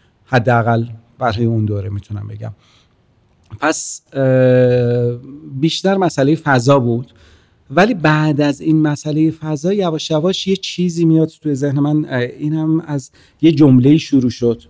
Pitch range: 115-150 Hz